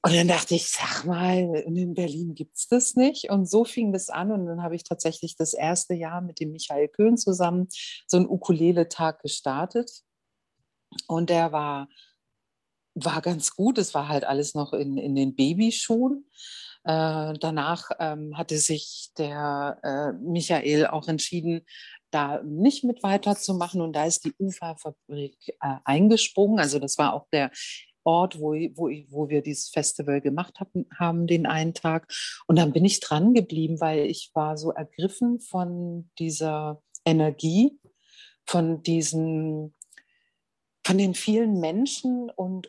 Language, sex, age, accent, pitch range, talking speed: German, female, 50-69, German, 155-190 Hz, 150 wpm